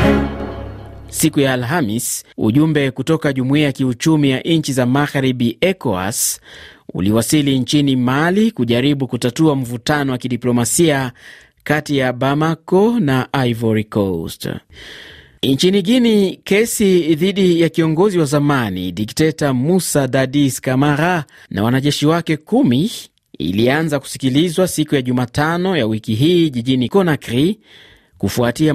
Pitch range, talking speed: 120-155 Hz, 110 wpm